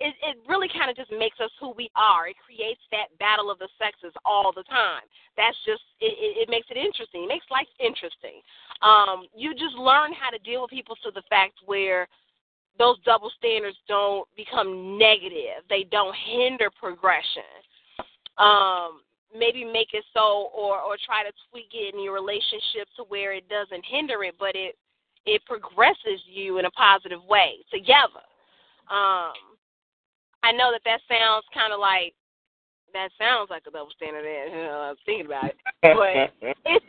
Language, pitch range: English, 205-345 Hz